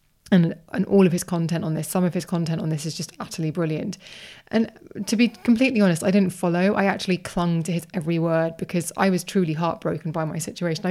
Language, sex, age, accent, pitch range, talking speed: English, female, 20-39, British, 160-190 Hz, 225 wpm